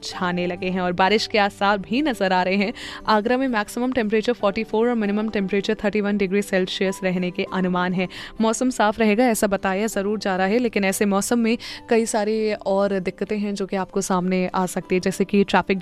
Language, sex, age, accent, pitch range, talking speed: Hindi, female, 20-39, native, 195-230 Hz, 215 wpm